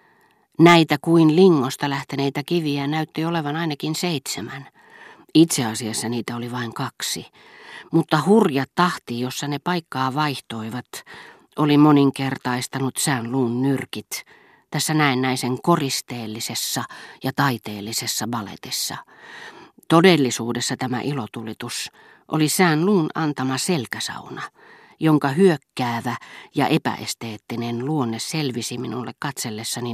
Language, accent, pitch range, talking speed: Finnish, native, 125-160 Hz, 100 wpm